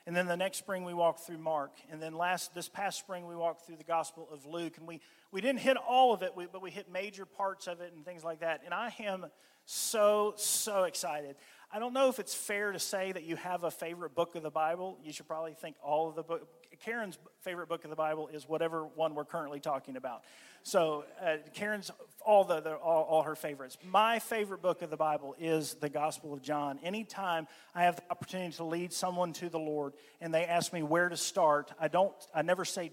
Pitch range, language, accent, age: 155-200 Hz, English, American, 40-59